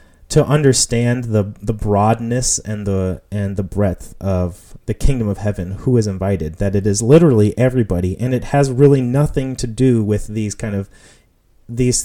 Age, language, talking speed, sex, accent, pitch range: 30-49, English, 175 wpm, male, American, 105-140 Hz